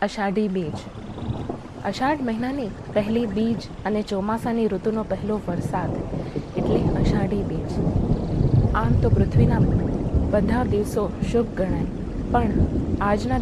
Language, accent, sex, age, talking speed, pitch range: Gujarati, native, female, 20-39, 105 wpm, 195-235 Hz